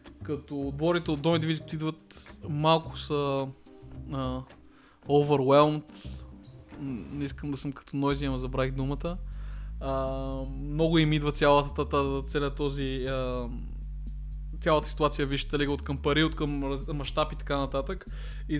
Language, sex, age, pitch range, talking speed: Bulgarian, male, 20-39, 135-155 Hz, 125 wpm